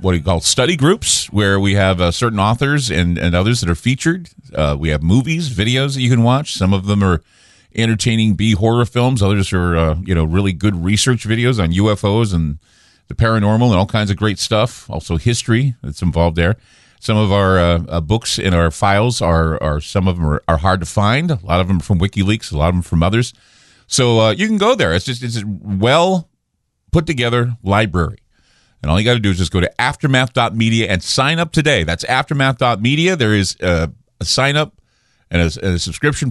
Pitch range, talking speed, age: 85-120 Hz, 220 wpm, 40-59